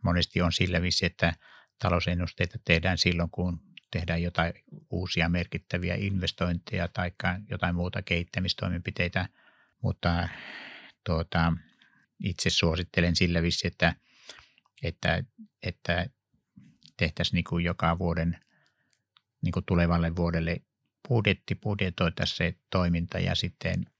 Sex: male